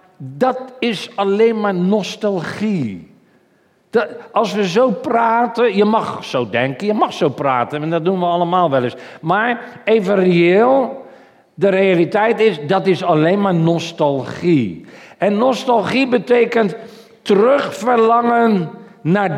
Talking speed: 125 wpm